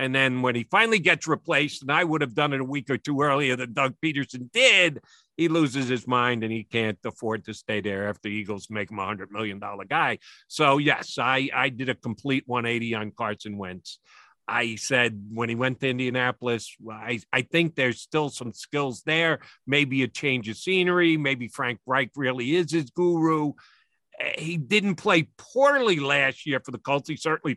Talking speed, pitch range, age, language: 200 wpm, 115-145 Hz, 50-69, English